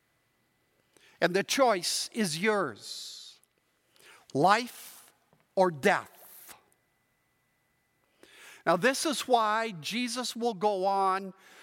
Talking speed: 85 wpm